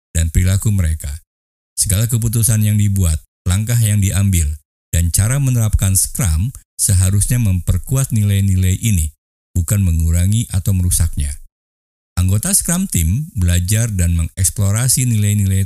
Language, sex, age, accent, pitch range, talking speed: Indonesian, male, 50-69, native, 80-105 Hz, 110 wpm